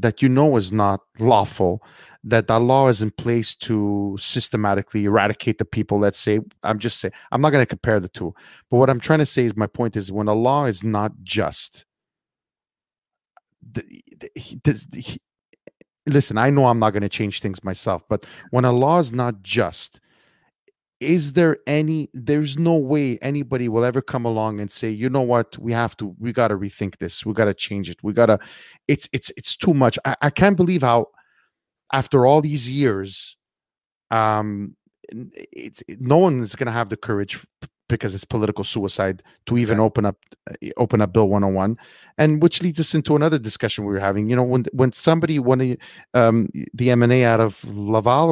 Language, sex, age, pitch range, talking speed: English, male, 30-49, 105-135 Hz, 185 wpm